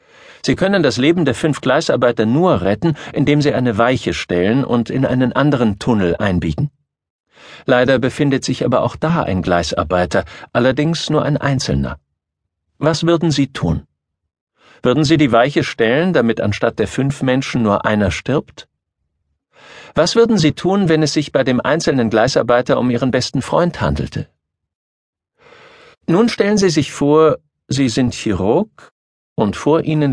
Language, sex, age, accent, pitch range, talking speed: German, male, 50-69, German, 95-150 Hz, 150 wpm